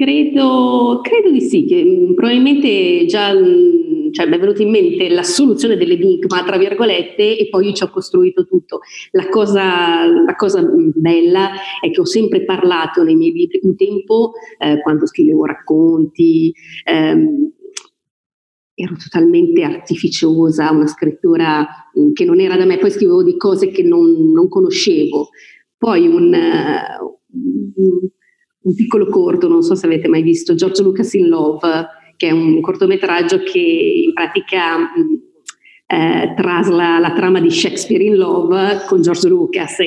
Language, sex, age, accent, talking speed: Italian, female, 30-49, native, 145 wpm